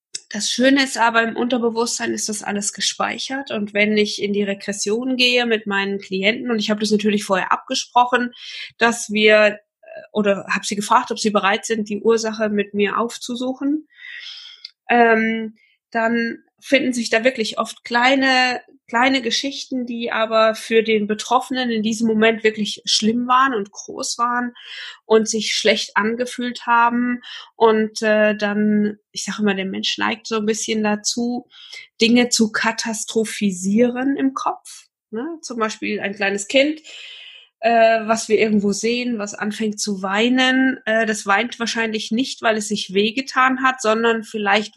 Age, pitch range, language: 20-39, 210-245 Hz, German